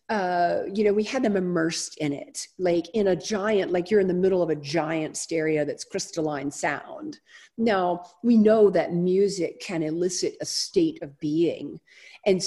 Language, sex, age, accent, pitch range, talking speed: English, female, 50-69, American, 160-215 Hz, 180 wpm